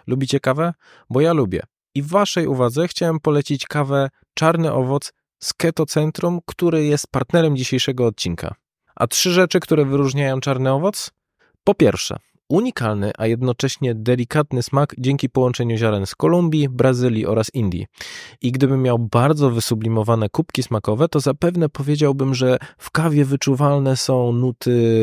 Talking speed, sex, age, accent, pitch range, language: 145 wpm, male, 20-39, native, 120-155 Hz, Polish